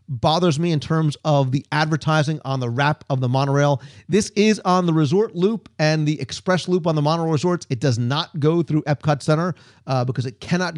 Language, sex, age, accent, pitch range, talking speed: English, male, 40-59, American, 135-175 Hz, 210 wpm